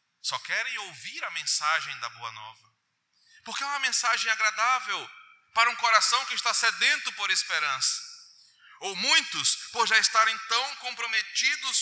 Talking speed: 140 wpm